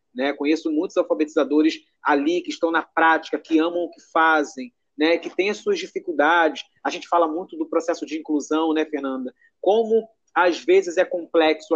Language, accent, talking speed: Portuguese, Brazilian, 180 wpm